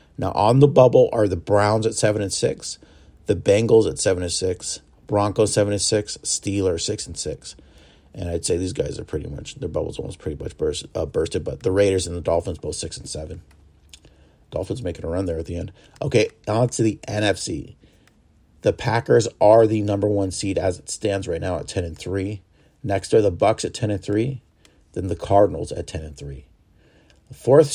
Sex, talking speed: male, 185 wpm